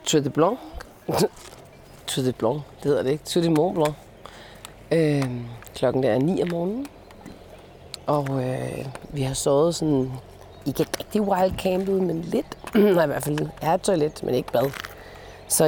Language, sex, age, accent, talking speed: Danish, female, 30-49, native, 160 wpm